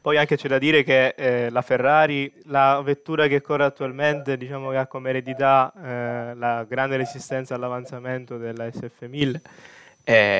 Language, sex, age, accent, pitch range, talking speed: Italian, male, 20-39, native, 120-140 Hz, 160 wpm